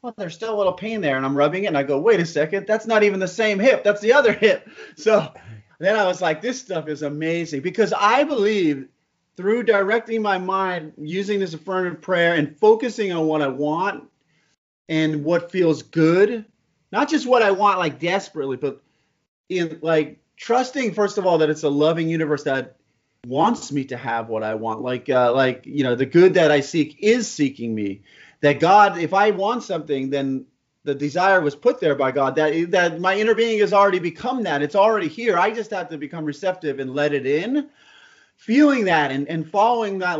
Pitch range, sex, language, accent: 150-210 Hz, male, English, American